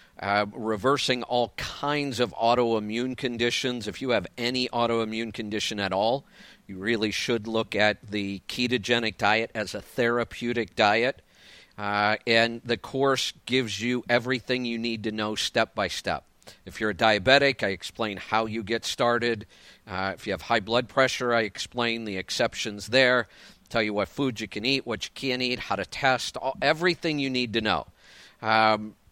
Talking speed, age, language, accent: 175 wpm, 50-69, English, American